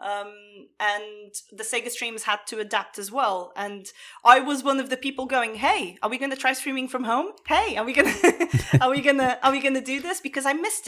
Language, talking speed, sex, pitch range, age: English, 250 wpm, female, 215-270 Hz, 20-39